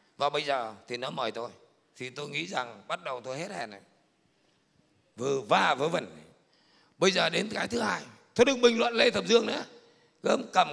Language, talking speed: Vietnamese, 200 wpm